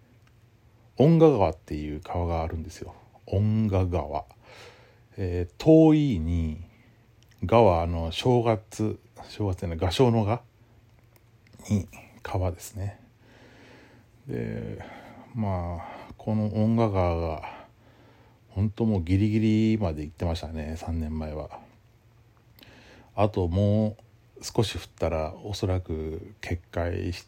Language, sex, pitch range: Japanese, male, 90-115 Hz